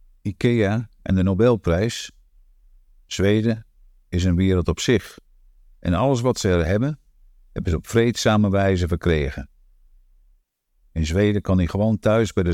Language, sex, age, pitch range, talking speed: Dutch, male, 50-69, 75-105 Hz, 145 wpm